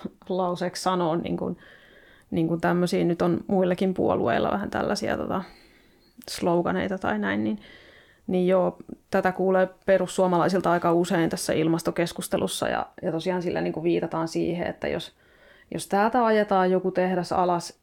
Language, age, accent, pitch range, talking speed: Finnish, 30-49, native, 170-195 Hz, 140 wpm